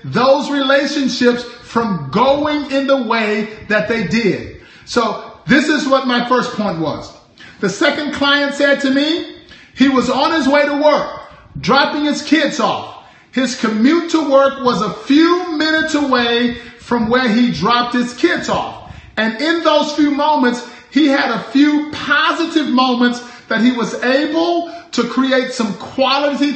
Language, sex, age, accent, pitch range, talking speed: English, male, 40-59, American, 230-290 Hz, 160 wpm